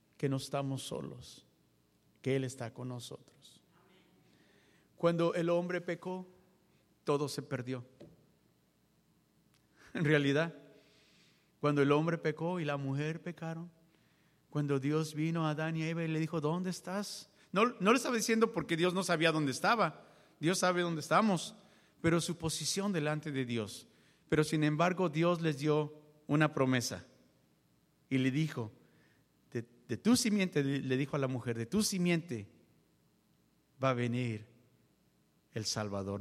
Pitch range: 135-180 Hz